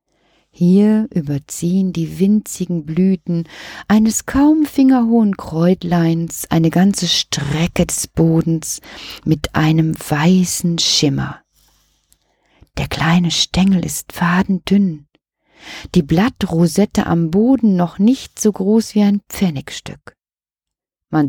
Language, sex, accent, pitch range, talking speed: German, female, German, 165-215 Hz, 100 wpm